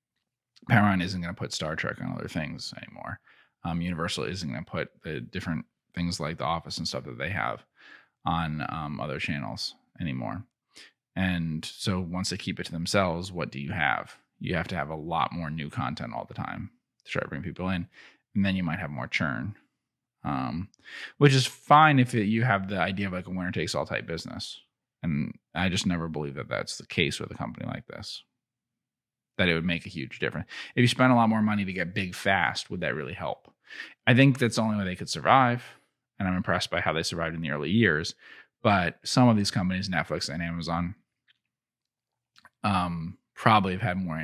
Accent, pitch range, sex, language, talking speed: American, 80-100 Hz, male, English, 210 wpm